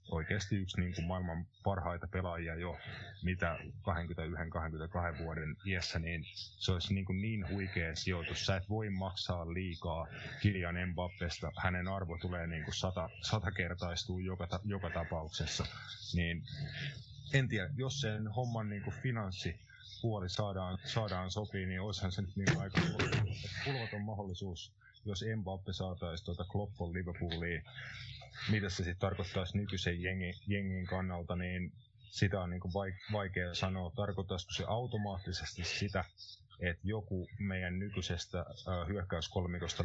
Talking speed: 125 wpm